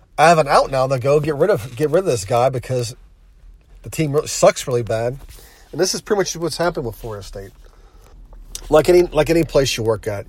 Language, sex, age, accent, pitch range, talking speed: English, male, 40-59, American, 115-145 Hz, 225 wpm